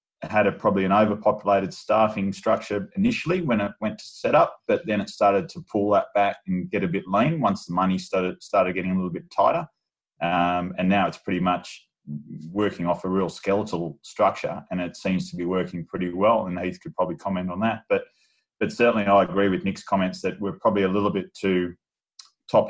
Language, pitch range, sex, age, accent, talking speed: English, 90-100 Hz, male, 20-39, Australian, 210 wpm